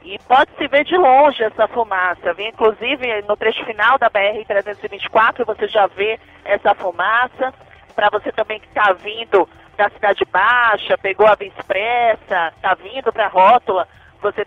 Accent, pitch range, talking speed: Brazilian, 200-250 Hz, 155 wpm